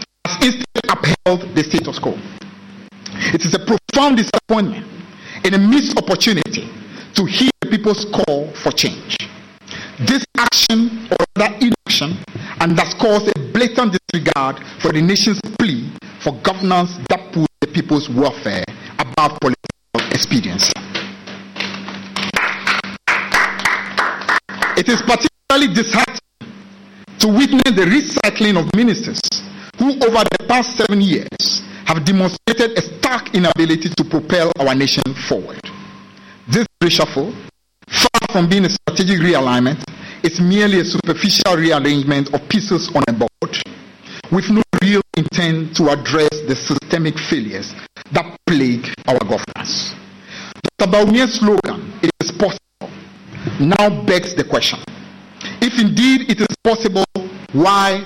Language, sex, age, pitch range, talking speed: English, male, 50-69, 165-220 Hz, 125 wpm